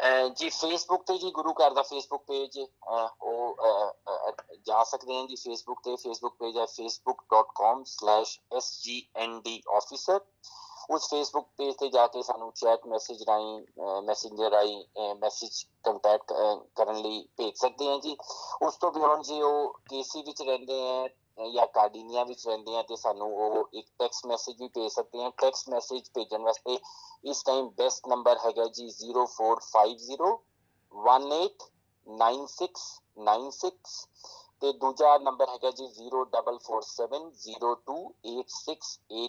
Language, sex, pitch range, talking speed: Punjabi, male, 115-140 Hz, 120 wpm